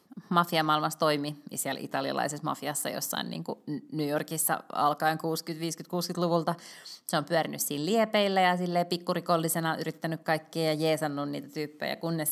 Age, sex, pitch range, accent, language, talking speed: 20-39, female, 150-175 Hz, native, Finnish, 125 wpm